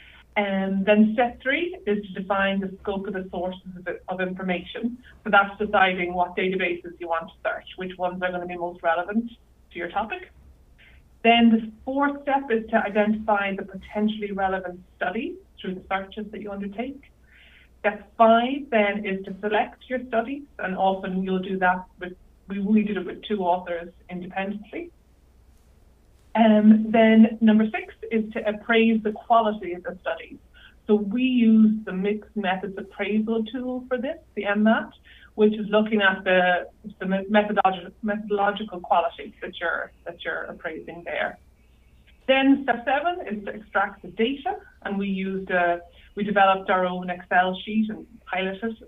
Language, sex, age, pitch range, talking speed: English, female, 30-49, 185-225 Hz, 165 wpm